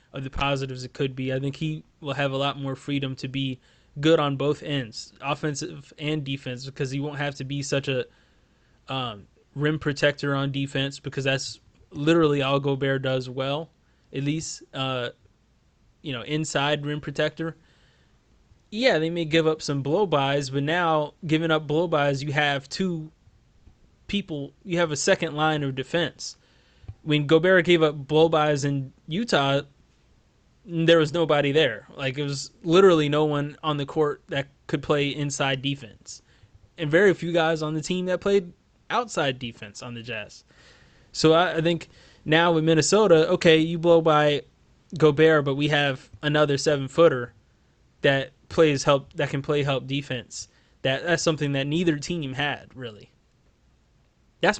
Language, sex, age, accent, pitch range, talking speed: English, male, 20-39, American, 140-160 Hz, 165 wpm